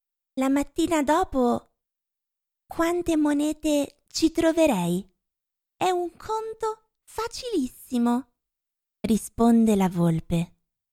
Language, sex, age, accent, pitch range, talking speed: Italian, female, 30-49, native, 240-370 Hz, 75 wpm